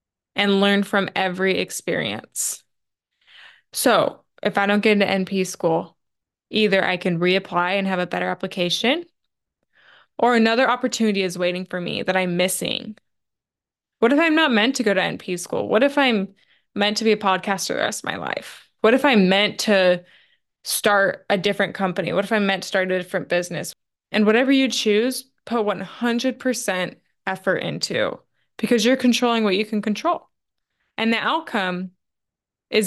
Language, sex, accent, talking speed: English, female, American, 170 wpm